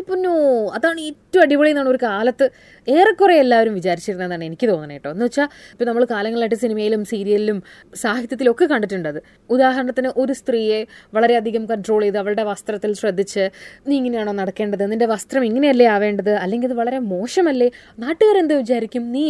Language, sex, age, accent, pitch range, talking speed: Malayalam, female, 20-39, native, 205-275 Hz, 145 wpm